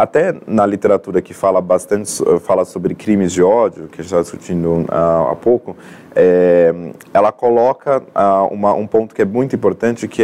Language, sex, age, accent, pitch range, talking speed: Portuguese, male, 20-39, Brazilian, 90-120 Hz, 160 wpm